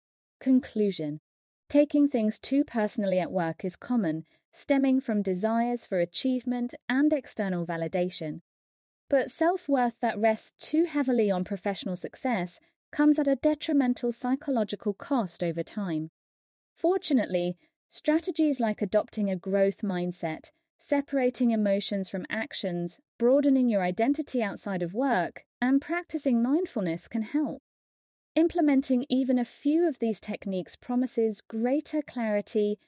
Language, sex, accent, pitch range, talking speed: English, female, British, 190-275 Hz, 120 wpm